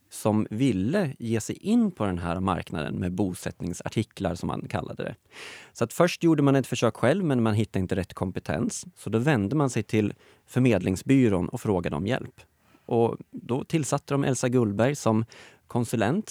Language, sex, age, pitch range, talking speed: Swedish, male, 30-49, 100-135 Hz, 175 wpm